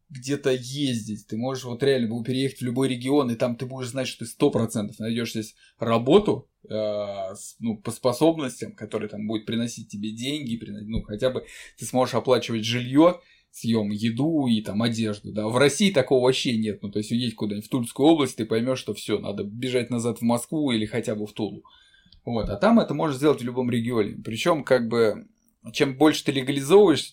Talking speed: 195 wpm